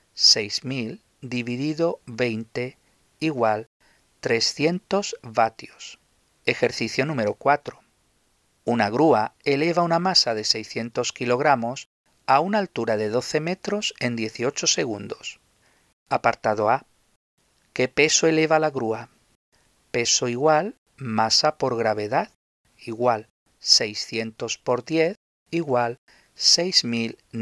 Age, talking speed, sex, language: 50-69, 95 wpm, male, Spanish